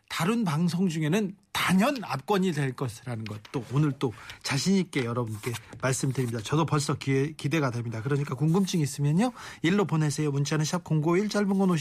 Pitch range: 140-180 Hz